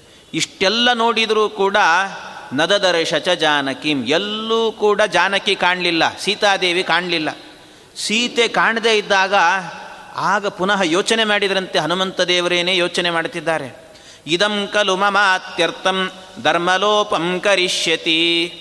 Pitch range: 175-220 Hz